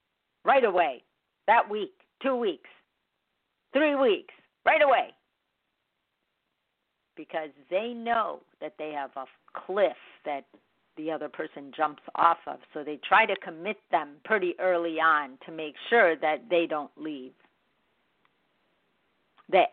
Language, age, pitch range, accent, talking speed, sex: English, 50-69, 160-210 Hz, American, 130 wpm, female